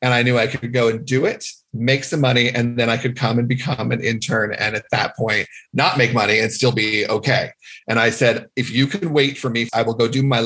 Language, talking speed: English, 265 wpm